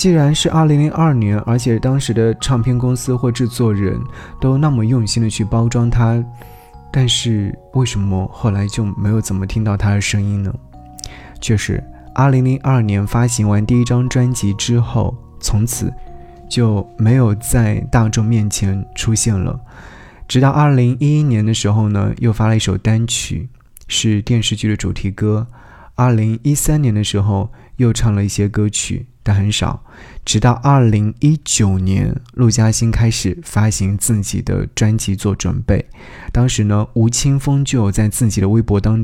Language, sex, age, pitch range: Chinese, male, 20-39, 100-120 Hz